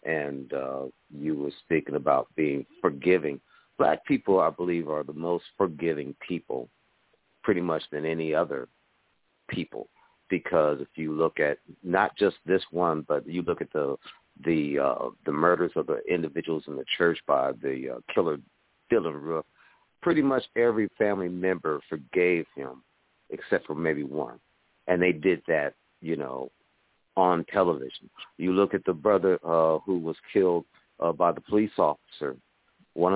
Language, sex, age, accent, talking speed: English, male, 50-69, American, 155 wpm